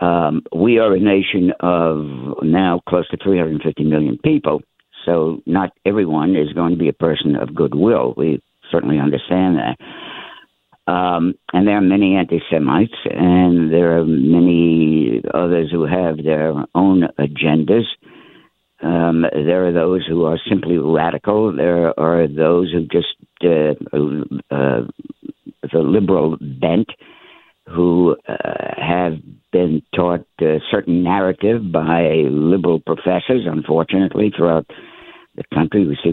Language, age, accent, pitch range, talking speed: English, 60-79, American, 80-95 Hz, 130 wpm